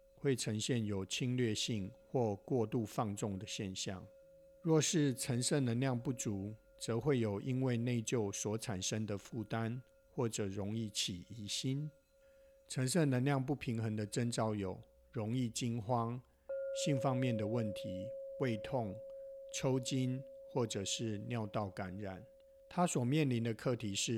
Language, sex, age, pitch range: English, male, 50-69, 105-140 Hz